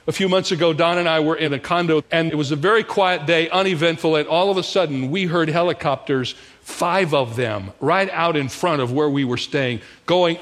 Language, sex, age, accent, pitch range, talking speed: English, male, 50-69, American, 145-185 Hz, 230 wpm